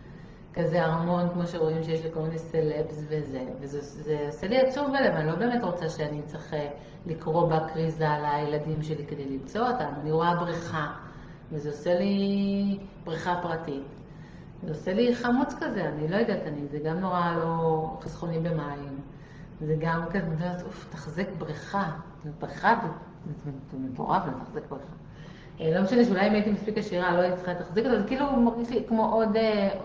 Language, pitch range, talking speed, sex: Hebrew, 155-190 Hz, 165 wpm, female